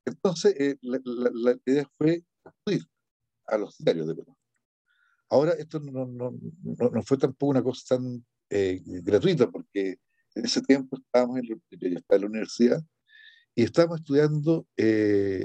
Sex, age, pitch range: male, 60-79, 105-160 Hz